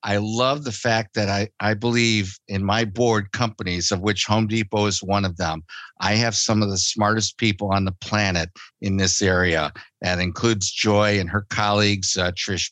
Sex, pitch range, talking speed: male, 100-125 Hz, 195 wpm